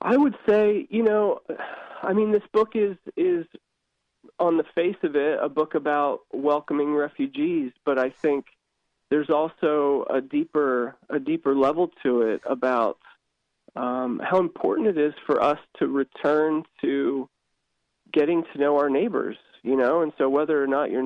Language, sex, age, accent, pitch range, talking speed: English, male, 20-39, American, 130-160 Hz, 160 wpm